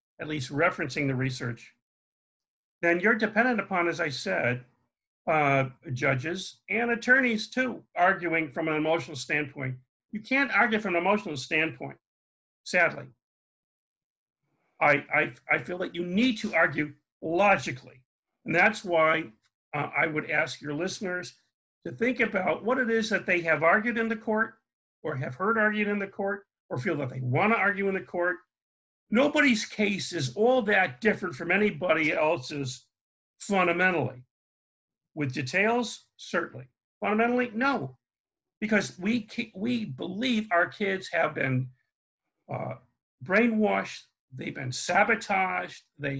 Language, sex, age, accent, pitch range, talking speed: English, male, 50-69, American, 140-215 Hz, 140 wpm